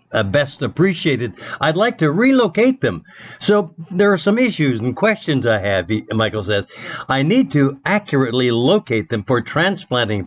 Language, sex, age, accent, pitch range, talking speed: English, male, 60-79, American, 120-155 Hz, 160 wpm